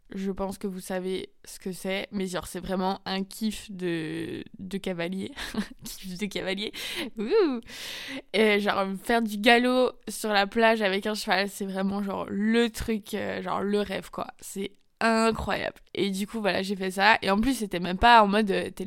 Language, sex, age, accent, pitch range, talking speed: French, female, 20-39, French, 195-235 Hz, 190 wpm